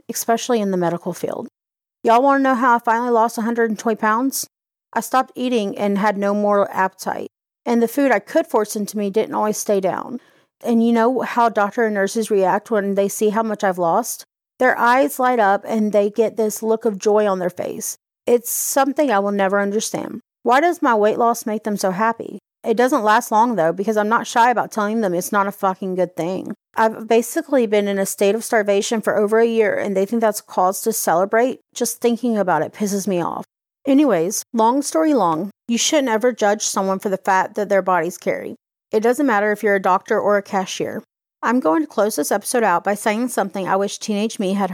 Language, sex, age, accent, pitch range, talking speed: English, female, 30-49, American, 200-235 Hz, 220 wpm